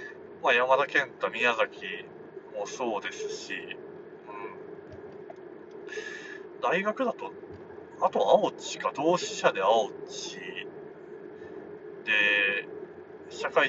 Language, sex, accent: Japanese, male, native